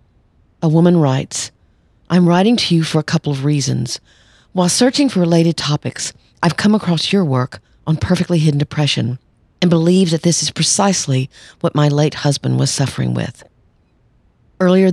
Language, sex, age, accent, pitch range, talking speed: English, female, 50-69, American, 140-170 Hz, 160 wpm